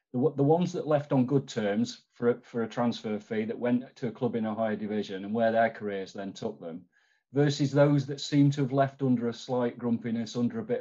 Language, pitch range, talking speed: English, 105-120 Hz, 240 wpm